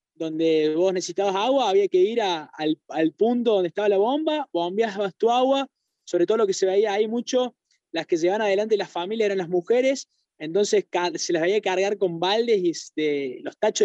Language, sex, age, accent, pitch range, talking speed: Spanish, male, 20-39, Argentinian, 175-265 Hz, 205 wpm